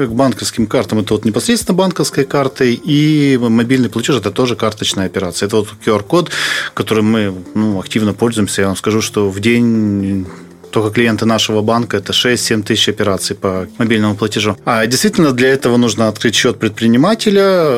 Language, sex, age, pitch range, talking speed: Russian, male, 20-39, 105-130 Hz, 160 wpm